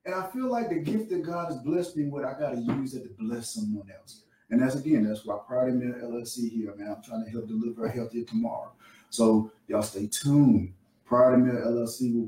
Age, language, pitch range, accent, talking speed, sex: 30-49, English, 115-155 Hz, American, 230 wpm, male